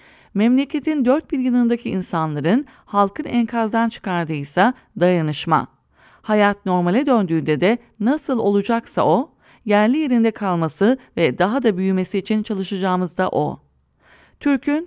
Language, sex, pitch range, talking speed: English, female, 180-245 Hz, 115 wpm